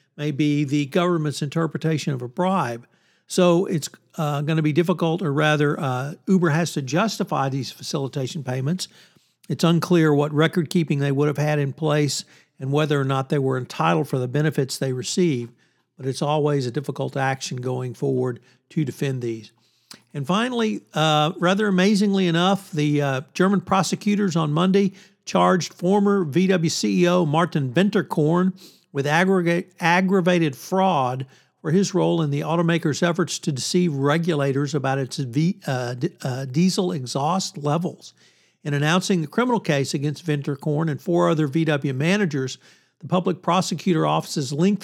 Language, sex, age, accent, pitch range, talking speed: English, male, 60-79, American, 145-180 Hz, 155 wpm